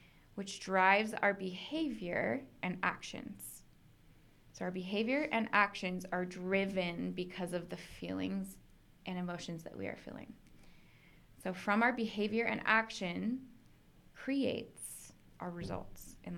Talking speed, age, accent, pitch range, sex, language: 120 wpm, 20-39, American, 180-215 Hz, female, English